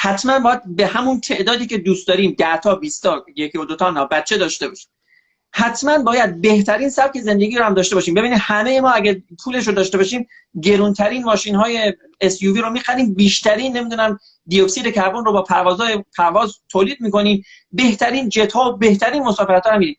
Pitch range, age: 195-250 Hz, 40-59